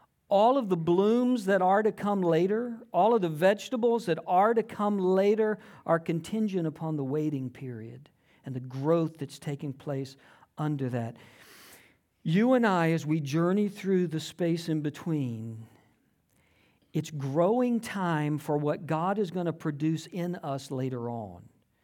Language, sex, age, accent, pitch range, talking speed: English, male, 50-69, American, 155-220 Hz, 155 wpm